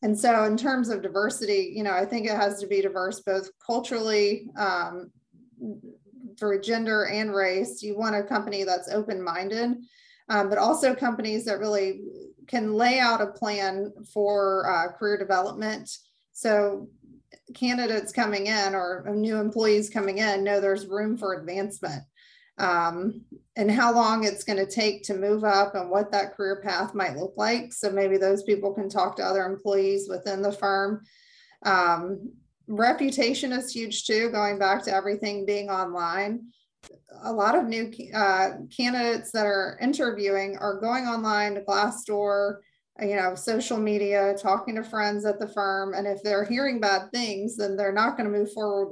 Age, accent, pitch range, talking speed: 30-49, American, 195-225 Hz, 165 wpm